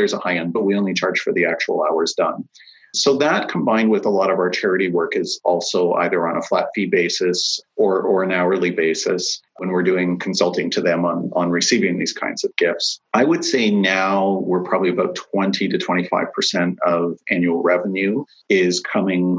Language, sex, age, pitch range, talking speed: English, male, 40-59, 85-95 Hz, 200 wpm